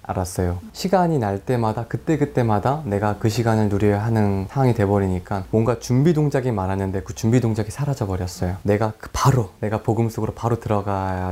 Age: 20-39